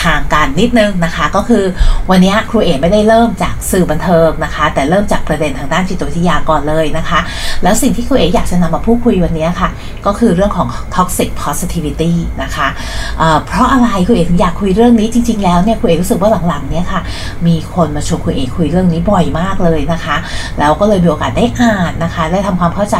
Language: Thai